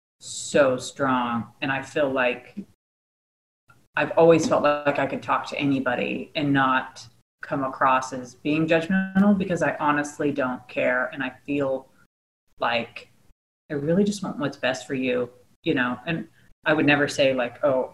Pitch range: 125-160 Hz